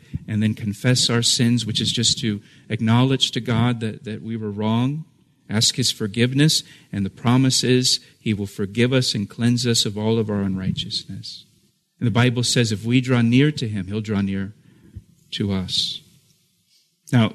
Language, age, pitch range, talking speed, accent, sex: English, 40-59, 110-140 Hz, 180 wpm, American, male